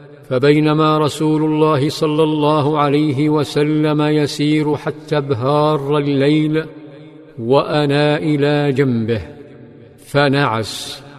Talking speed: 80 wpm